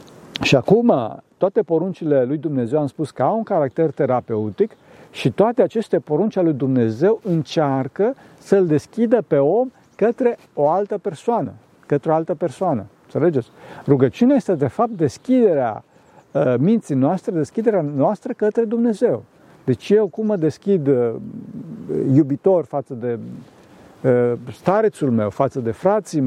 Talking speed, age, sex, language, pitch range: 130 wpm, 50-69, male, Romanian, 145-210 Hz